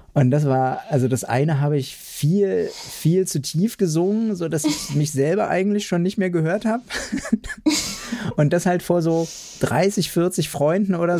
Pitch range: 135-180 Hz